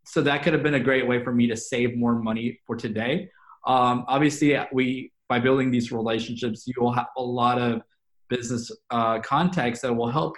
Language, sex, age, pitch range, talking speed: English, male, 20-39, 115-135 Hz, 200 wpm